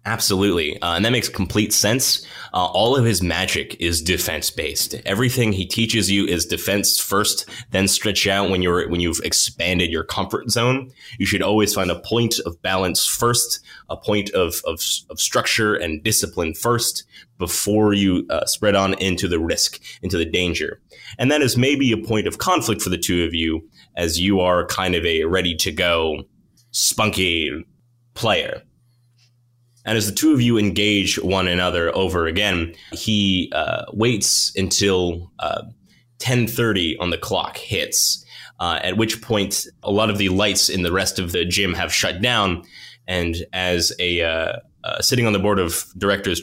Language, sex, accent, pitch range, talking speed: English, male, American, 90-110 Hz, 175 wpm